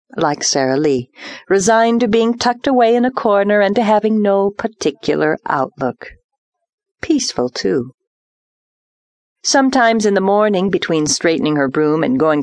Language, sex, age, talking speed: English, female, 40-59, 140 wpm